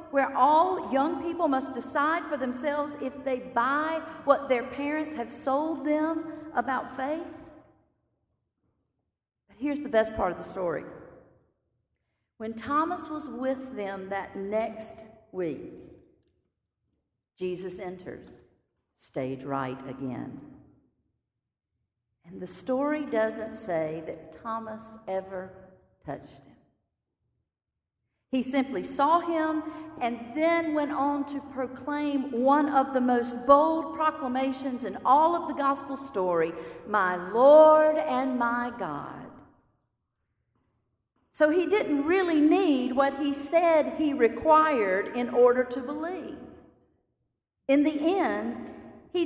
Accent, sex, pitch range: American, female, 210-310 Hz